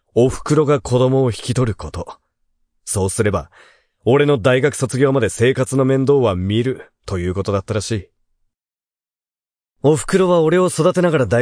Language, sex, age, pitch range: Japanese, male, 30-49, 110-145 Hz